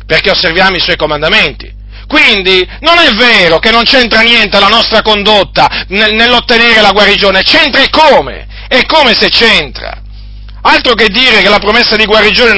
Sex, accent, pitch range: male, native, 180-250 Hz